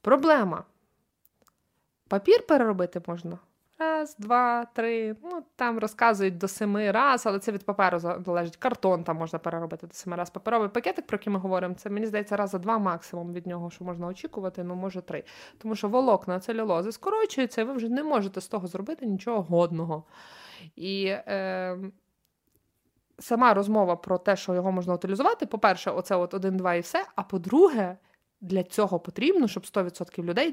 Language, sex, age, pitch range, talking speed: Ukrainian, female, 20-39, 175-225 Hz, 165 wpm